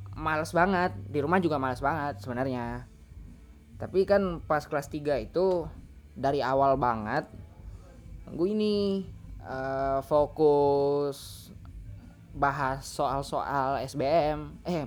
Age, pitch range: 20-39, 100-170 Hz